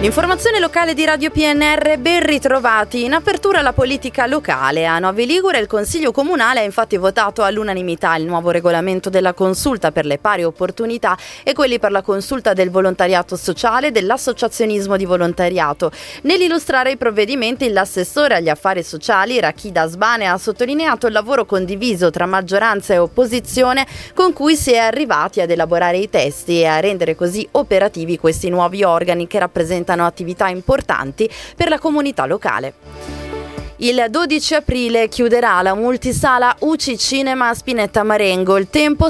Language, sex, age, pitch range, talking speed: Italian, female, 20-39, 180-255 Hz, 150 wpm